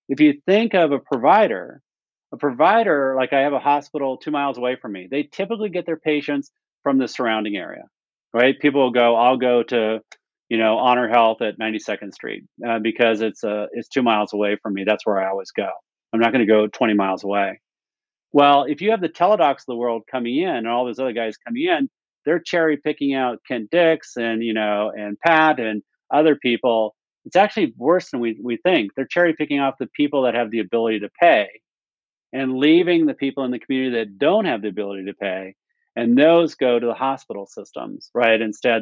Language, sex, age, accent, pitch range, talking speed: English, male, 40-59, American, 115-150 Hz, 215 wpm